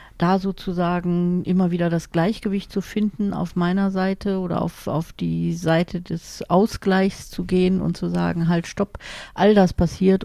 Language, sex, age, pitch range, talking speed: German, female, 40-59, 165-185 Hz, 165 wpm